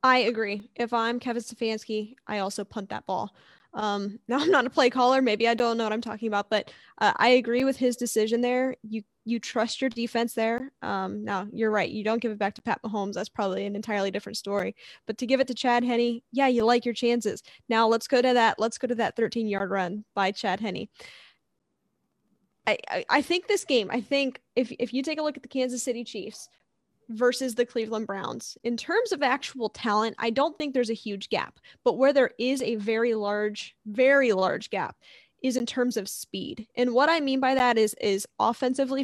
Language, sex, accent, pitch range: English, female, American, 220-255 Hz